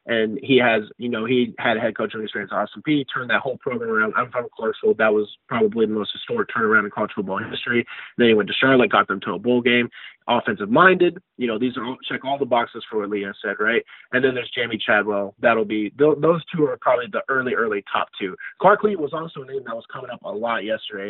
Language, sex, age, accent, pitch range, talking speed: English, male, 20-39, American, 110-170 Hz, 260 wpm